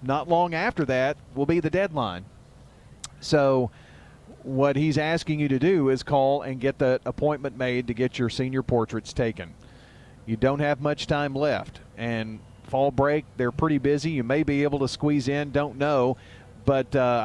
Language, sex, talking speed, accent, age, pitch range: English, male, 175 wpm, American, 40-59, 120-145 Hz